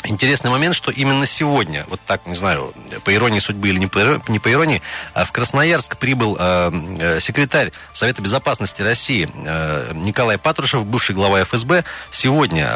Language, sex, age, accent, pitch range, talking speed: Russian, male, 30-49, native, 100-145 Hz, 140 wpm